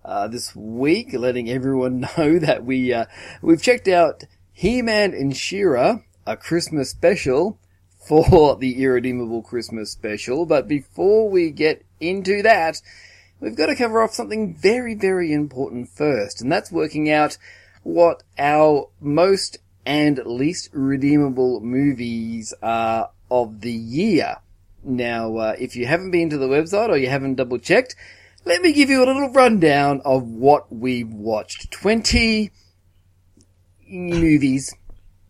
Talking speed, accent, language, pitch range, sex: 135 wpm, Australian, English, 110-170 Hz, male